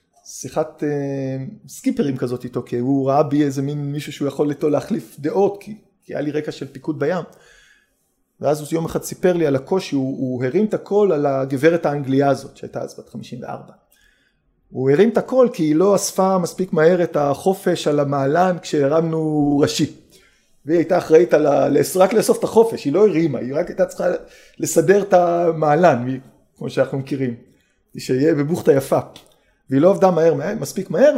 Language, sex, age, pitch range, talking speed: Hebrew, male, 30-49, 145-200 Hz, 180 wpm